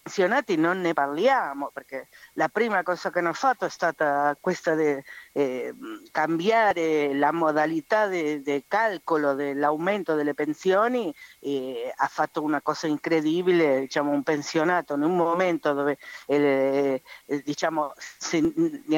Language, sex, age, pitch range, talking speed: Italian, female, 50-69, 145-175 Hz, 140 wpm